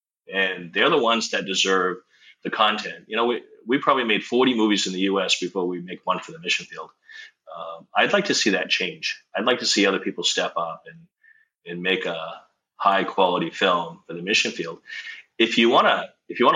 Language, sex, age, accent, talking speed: English, male, 30-49, American, 200 wpm